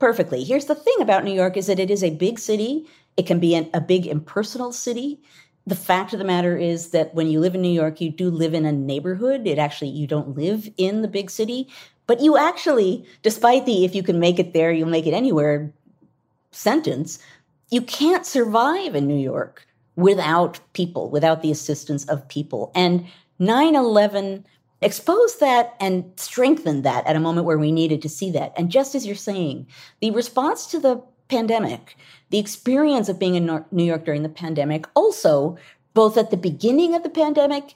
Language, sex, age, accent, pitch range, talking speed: English, female, 40-59, American, 150-225 Hz, 195 wpm